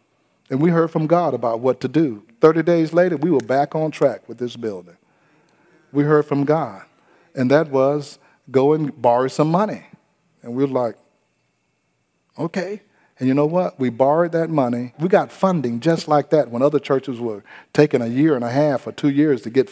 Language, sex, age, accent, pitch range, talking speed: English, male, 40-59, American, 130-170 Hz, 200 wpm